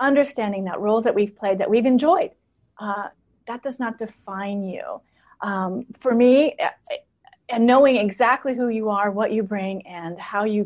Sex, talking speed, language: female, 170 wpm, English